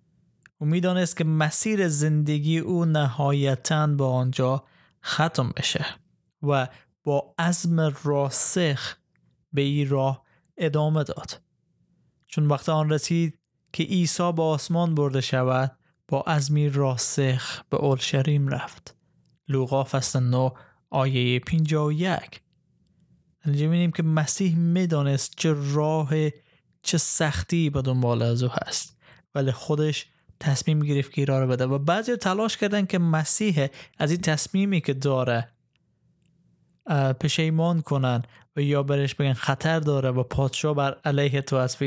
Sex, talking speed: male, 125 wpm